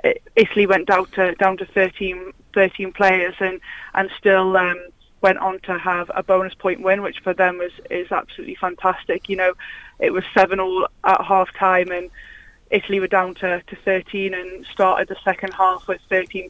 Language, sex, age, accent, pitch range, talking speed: English, female, 20-39, British, 180-190 Hz, 190 wpm